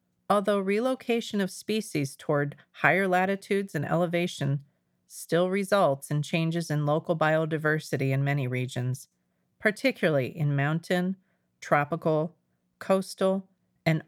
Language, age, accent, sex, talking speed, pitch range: English, 40-59, American, female, 105 wpm, 135-175 Hz